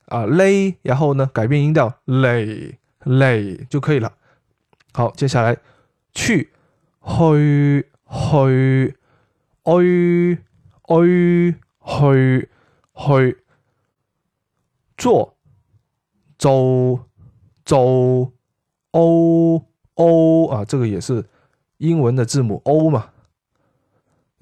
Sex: male